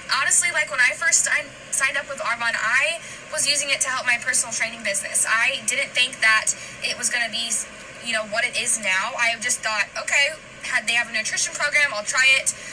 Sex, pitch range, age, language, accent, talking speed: female, 215-280 Hz, 10-29, English, American, 215 wpm